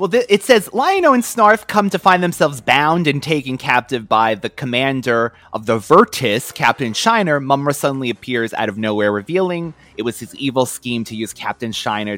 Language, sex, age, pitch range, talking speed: English, male, 30-49, 110-145 Hz, 190 wpm